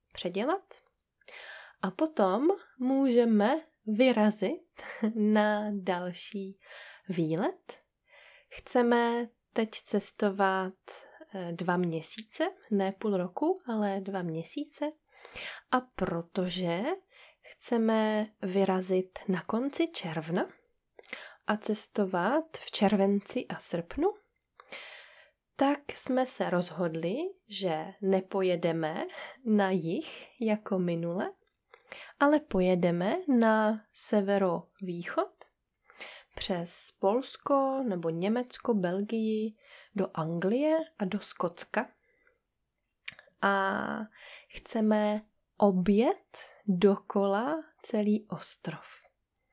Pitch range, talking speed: 190-260 Hz, 75 wpm